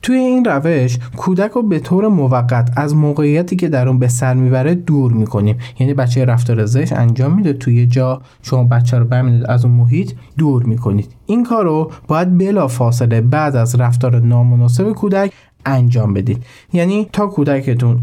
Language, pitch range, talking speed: Persian, 120-150 Hz, 170 wpm